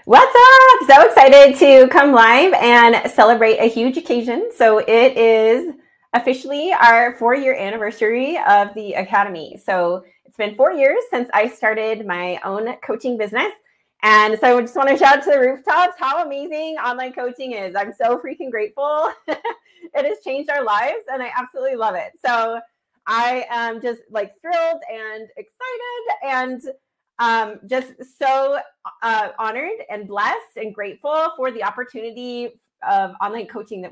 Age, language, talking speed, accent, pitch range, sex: 30-49, English, 160 wpm, American, 215-275 Hz, female